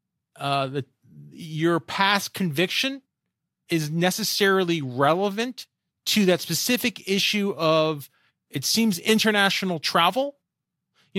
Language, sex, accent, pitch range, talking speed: English, male, American, 155-215 Hz, 95 wpm